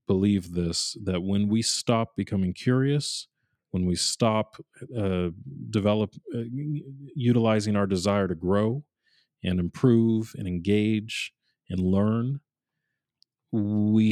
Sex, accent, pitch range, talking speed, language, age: male, American, 90-115 Hz, 110 wpm, English, 40-59